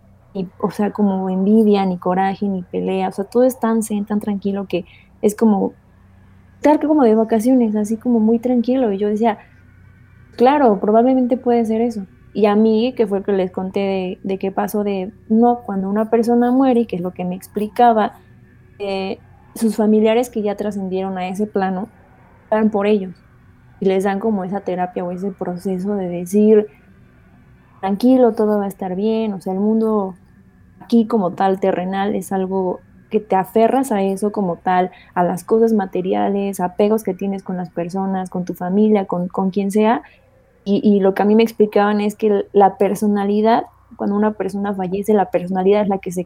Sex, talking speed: female, 190 wpm